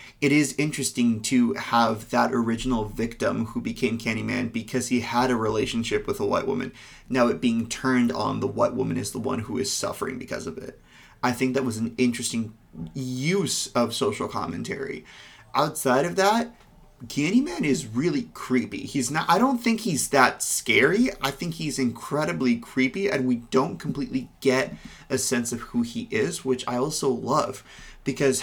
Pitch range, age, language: 115-135 Hz, 30-49, English